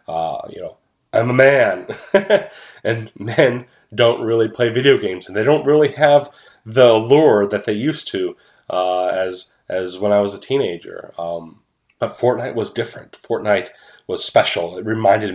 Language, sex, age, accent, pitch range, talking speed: English, male, 30-49, American, 105-155 Hz, 165 wpm